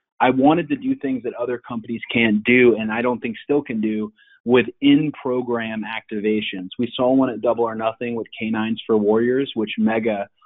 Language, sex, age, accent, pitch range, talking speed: English, male, 30-49, American, 105-120 Hz, 190 wpm